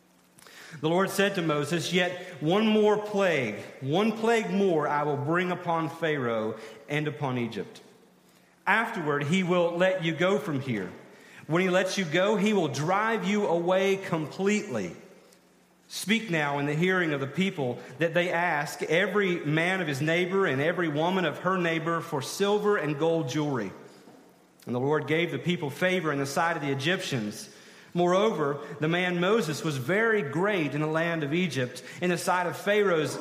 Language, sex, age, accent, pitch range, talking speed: English, male, 40-59, American, 150-195 Hz, 175 wpm